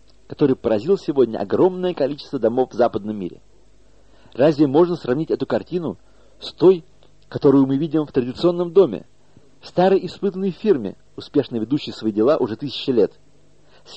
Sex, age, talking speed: male, 50-69, 140 wpm